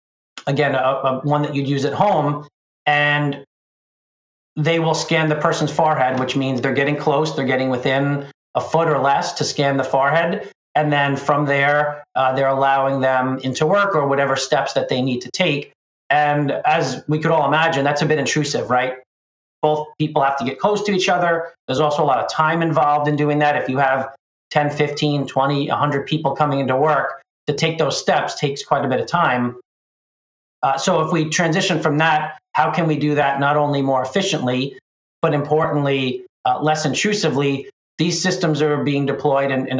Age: 40-59